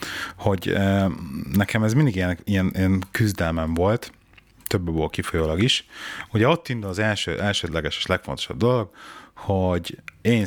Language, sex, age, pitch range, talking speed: Hungarian, male, 30-49, 85-110 Hz, 145 wpm